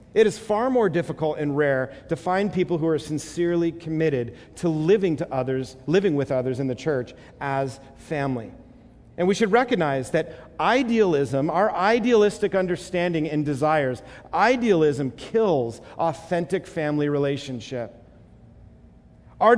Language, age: English, 40-59